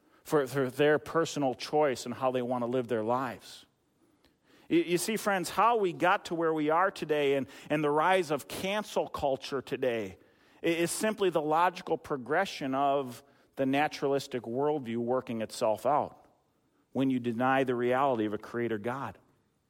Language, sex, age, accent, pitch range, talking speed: English, male, 40-59, American, 135-195 Hz, 160 wpm